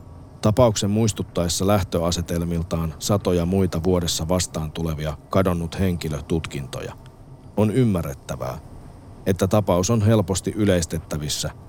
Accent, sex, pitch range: native, male, 85-105 Hz